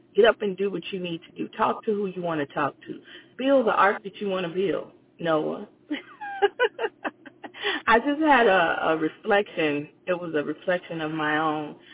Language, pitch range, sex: English, 170-230 Hz, female